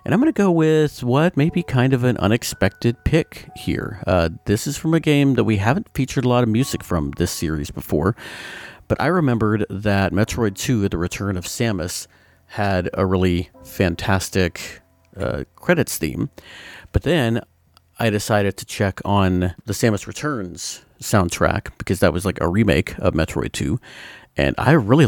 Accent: American